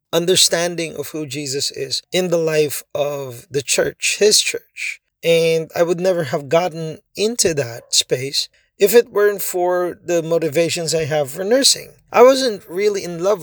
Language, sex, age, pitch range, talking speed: Filipino, male, 20-39, 150-185 Hz, 165 wpm